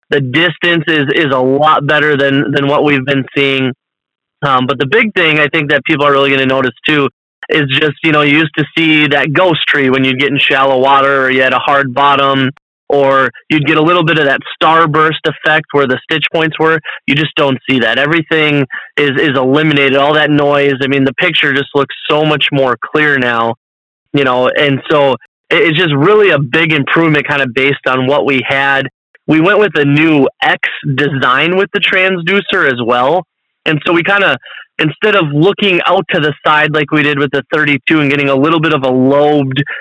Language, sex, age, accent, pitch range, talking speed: English, male, 20-39, American, 135-155 Hz, 220 wpm